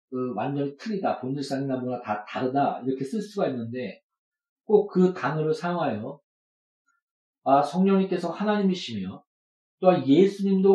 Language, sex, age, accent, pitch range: Korean, male, 40-59, native, 135-200 Hz